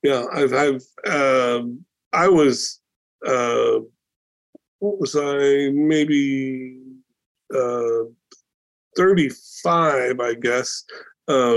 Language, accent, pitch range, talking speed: English, American, 120-150 Hz, 90 wpm